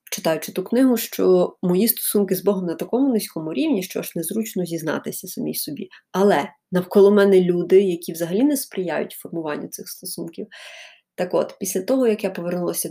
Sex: female